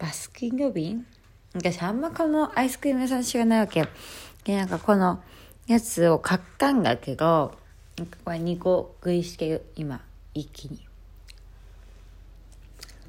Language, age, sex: Japanese, 40-59, female